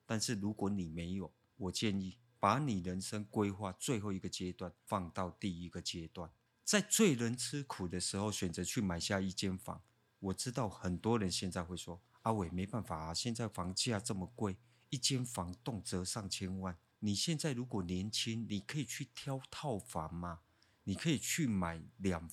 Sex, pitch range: male, 95-125 Hz